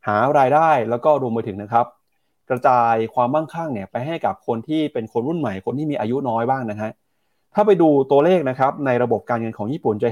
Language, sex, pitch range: Thai, male, 115-155 Hz